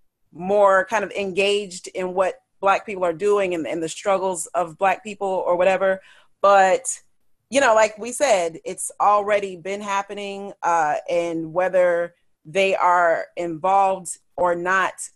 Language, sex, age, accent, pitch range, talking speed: English, female, 30-49, American, 175-205 Hz, 145 wpm